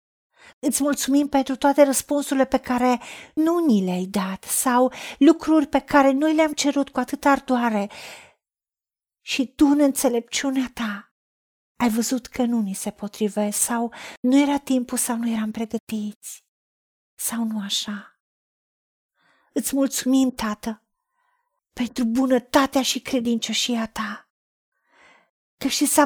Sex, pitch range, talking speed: female, 235-285 Hz, 125 wpm